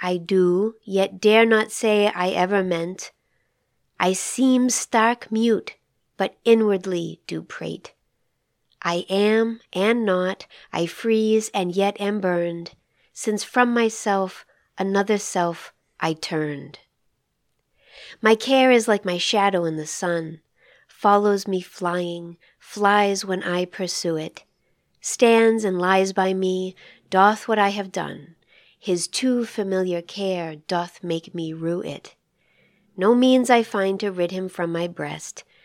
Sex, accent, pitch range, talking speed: female, American, 180-220 Hz, 135 wpm